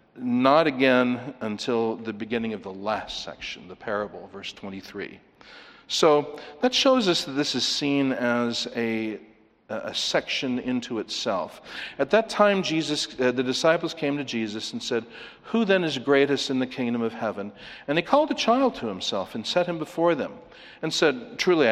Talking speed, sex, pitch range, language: 175 wpm, male, 120-150 Hz, English